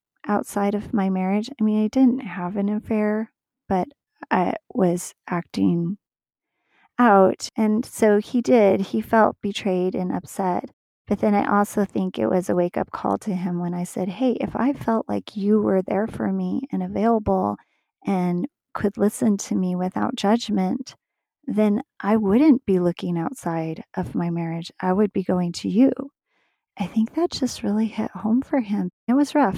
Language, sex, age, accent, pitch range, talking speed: English, female, 30-49, American, 185-235 Hz, 175 wpm